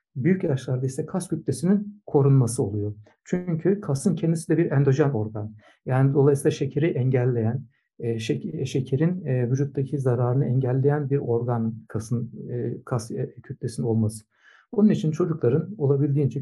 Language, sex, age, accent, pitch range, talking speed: Turkish, male, 60-79, native, 120-160 Hz, 120 wpm